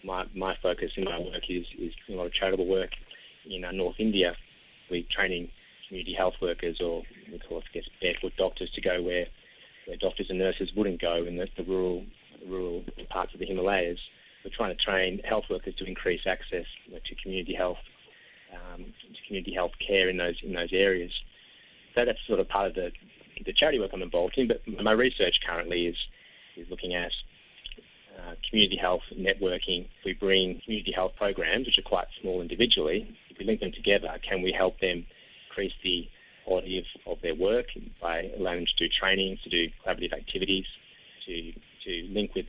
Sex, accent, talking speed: male, Australian, 190 wpm